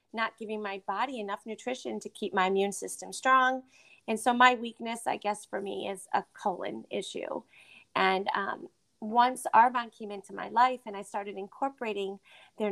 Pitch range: 195-225 Hz